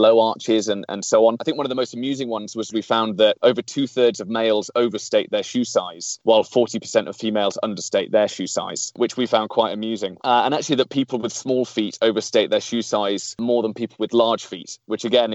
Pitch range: 110-125 Hz